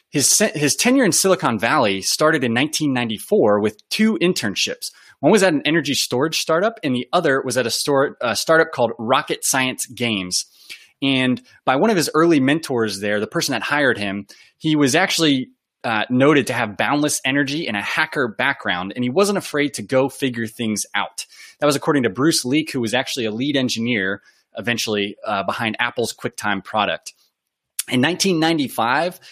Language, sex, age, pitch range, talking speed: English, male, 20-39, 120-160 Hz, 175 wpm